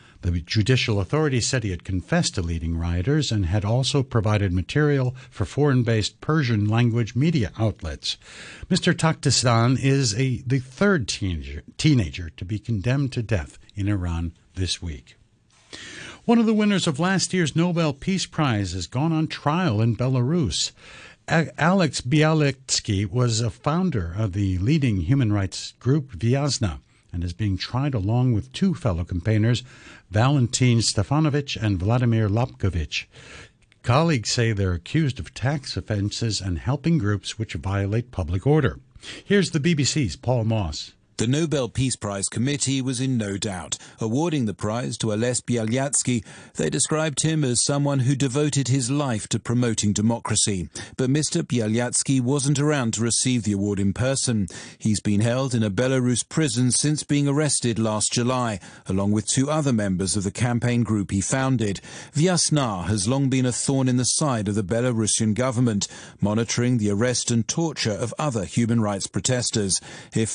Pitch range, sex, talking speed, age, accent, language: 105-140 Hz, male, 155 wpm, 60-79, American, English